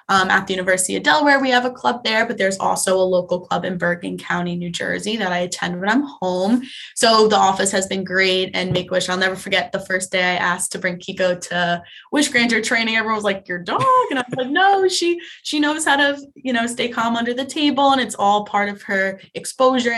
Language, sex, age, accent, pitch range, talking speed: English, female, 20-39, American, 185-240 Hz, 240 wpm